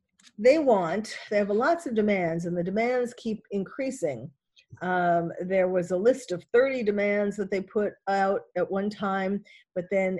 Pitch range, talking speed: 180-225 Hz, 170 wpm